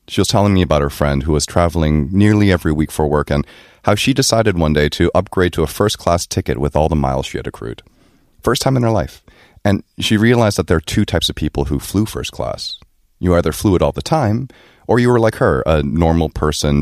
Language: Korean